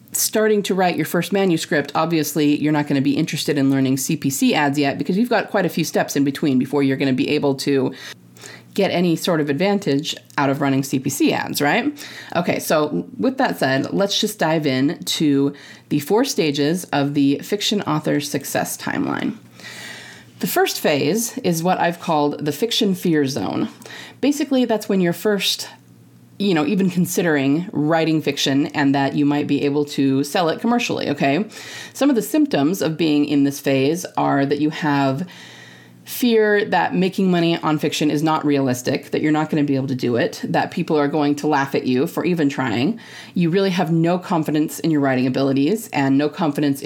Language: English